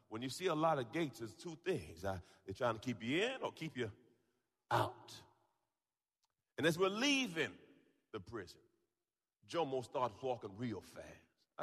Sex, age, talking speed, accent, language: male, 40-59, 165 wpm, American, English